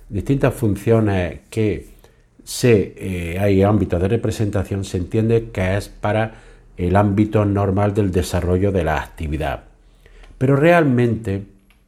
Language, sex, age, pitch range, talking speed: Spanish, male, 50-69, 90-115 Hz, 115 wpm